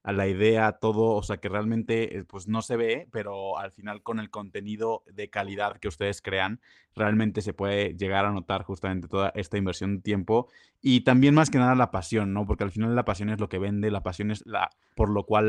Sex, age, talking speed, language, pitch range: male, 20-39, 230 wpm, Spanish, 100-115 Hz